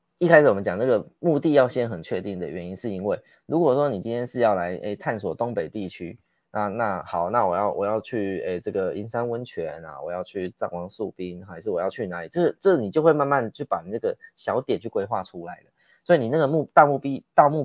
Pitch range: 95-130 Hz